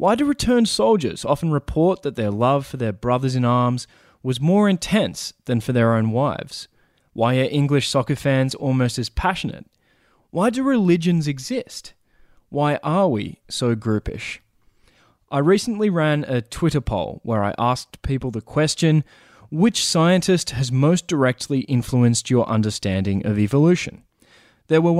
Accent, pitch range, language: Australian, 115-155 Hz, English